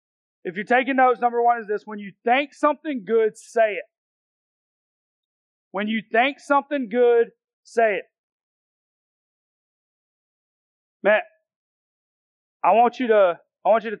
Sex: male